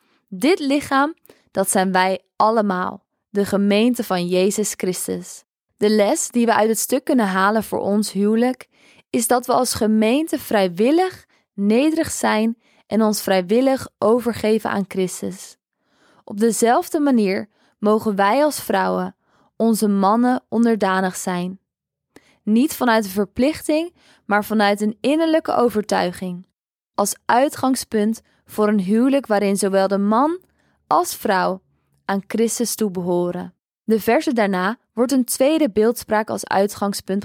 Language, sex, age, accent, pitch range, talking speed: Dutch, female, 20-39, Dutch, 195-245 Hz, 130 wpm